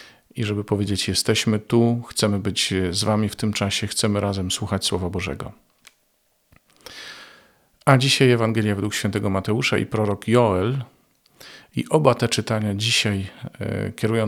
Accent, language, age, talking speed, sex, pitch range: native, Polish, 40-59, 135 wpm, male, 95-115 Hz